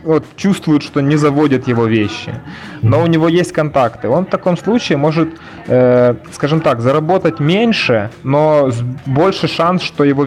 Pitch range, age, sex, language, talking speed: 120-155 Hz, 20-39, male, Russian, 150 wpm